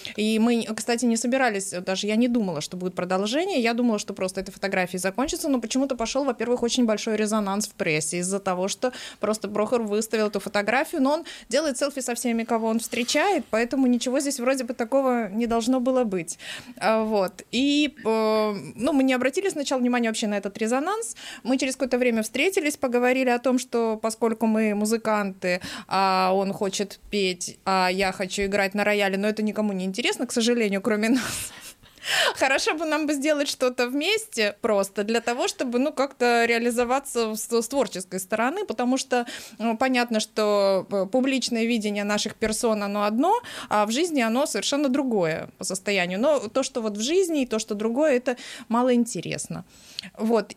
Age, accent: 20-39, native